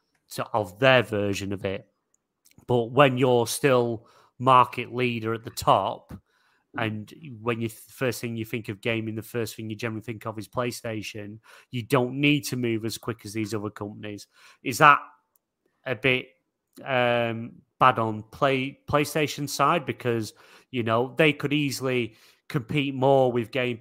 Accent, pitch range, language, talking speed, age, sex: British, 115-135 Hz, English, 160 wpm, 30-49, male